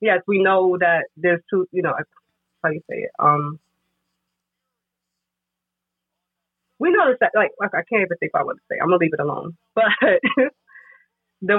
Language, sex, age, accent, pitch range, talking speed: English, female, 20-39, American, 160-195 Hz, 180 wpm